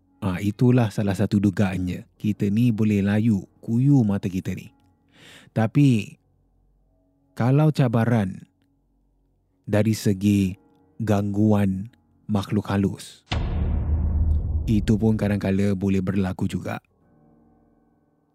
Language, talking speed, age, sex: Malay, 85 wpm, 30-49, male